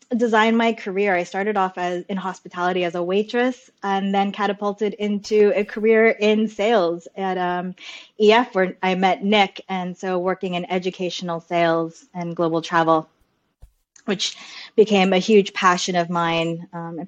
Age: 20-39